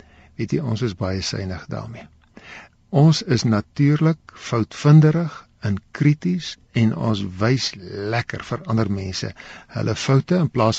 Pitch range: 105-150 Hz